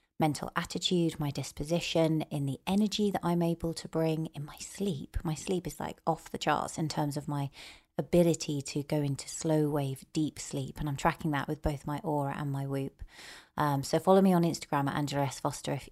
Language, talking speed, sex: English, 210 wpm, female